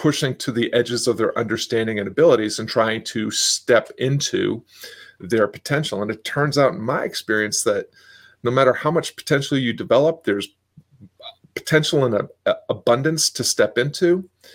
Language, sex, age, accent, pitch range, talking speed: English, male, 40-59, American, 110-135 Hz, 155 wpm